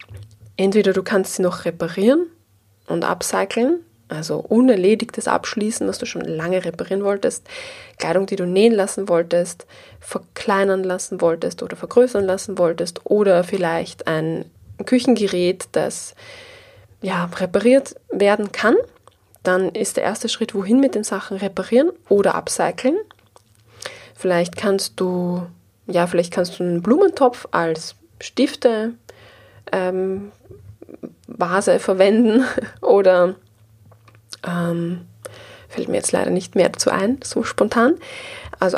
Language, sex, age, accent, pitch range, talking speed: German, female, 20-39, German, 175-245 Hz, 115 wpm